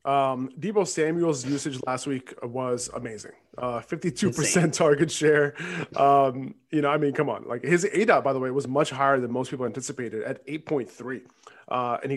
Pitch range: 125-150 Hz